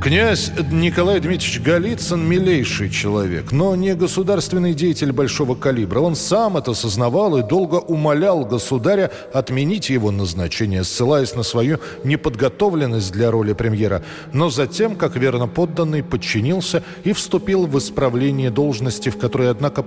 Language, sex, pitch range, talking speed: Russian, male, 115-165 Hz, 135 wpm